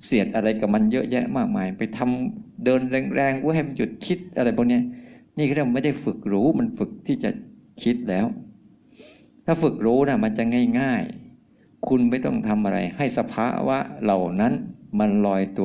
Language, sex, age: Thai, male, 60-79